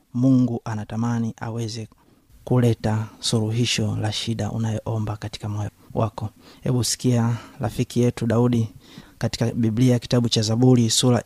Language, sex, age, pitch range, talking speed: Swahili, male, 30-49, 115-125 Hz, 115 wpm